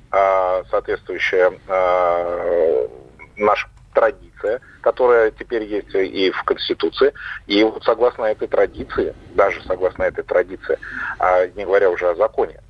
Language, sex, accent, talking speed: Russian, male, native, 110 wpm